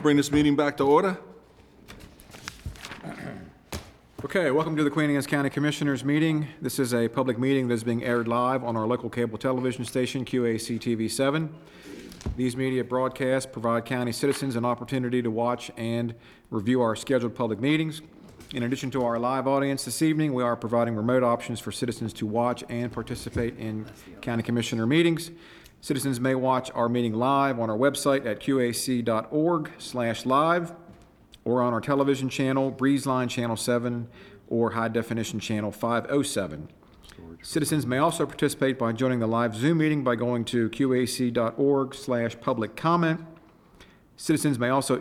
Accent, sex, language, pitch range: American, male, English, 115-135 Hz